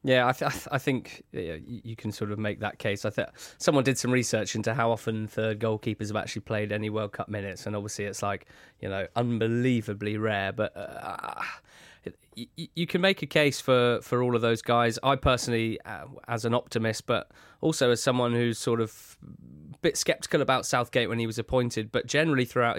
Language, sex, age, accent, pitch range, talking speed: English, male, 20-39, British, 110-125 Hz, 205 wpm